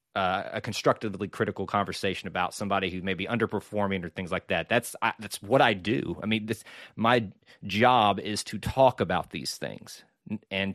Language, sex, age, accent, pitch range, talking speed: English, male, 30-49, American, 100-130 Hz, 175 wpm